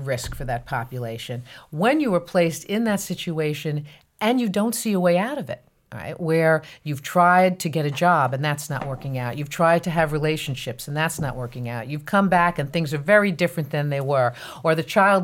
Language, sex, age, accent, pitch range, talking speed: English, female, 40-59, American, 140-180 Hz, 230 wpm